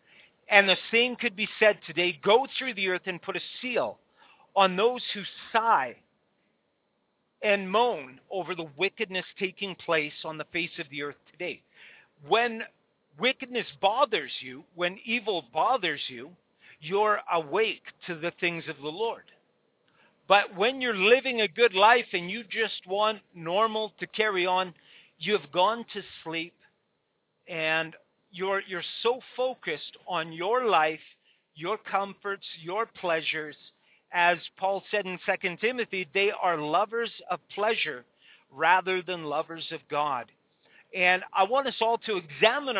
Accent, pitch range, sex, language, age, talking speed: American, 170-220 Hz, male, English, 50-69, 145 wpm